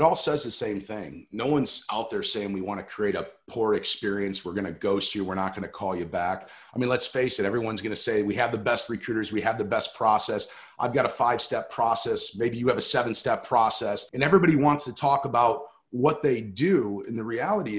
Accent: American